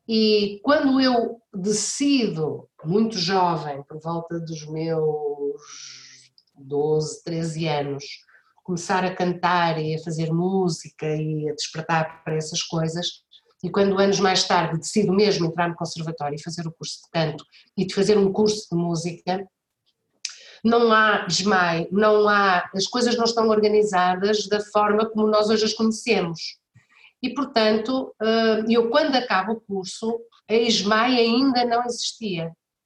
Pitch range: 175-230 Hz